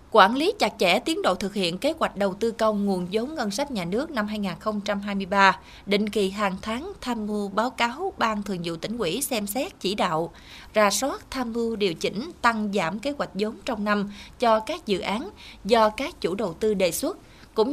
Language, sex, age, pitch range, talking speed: Vietnamese, female, 20-39, 195-255 Hz, 215 wpm